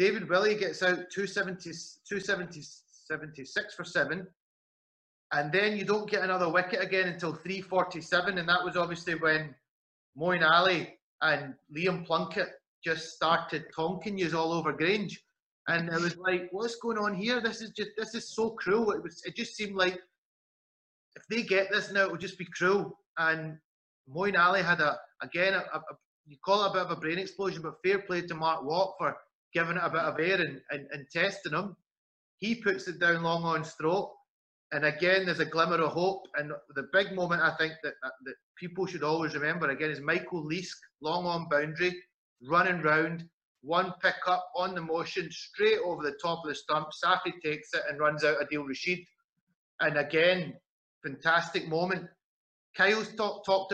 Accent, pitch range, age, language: British, 160-190 Hz, 30-49, English